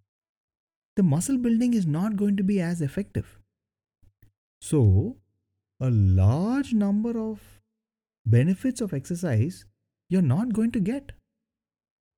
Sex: male